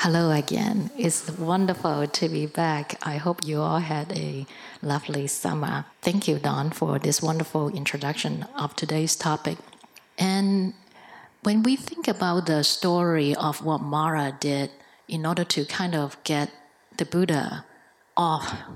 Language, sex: English, female